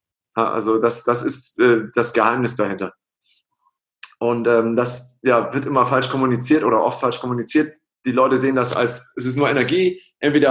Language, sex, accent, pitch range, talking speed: German, male, German, 115-135 Hz, 165 wpm